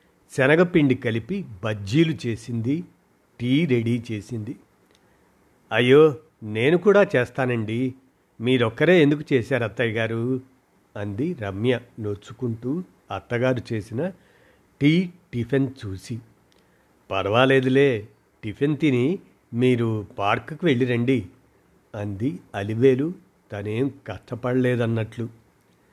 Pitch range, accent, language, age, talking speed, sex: 110-140 Hz, native, Telugu, 50-69, 80 wpm, male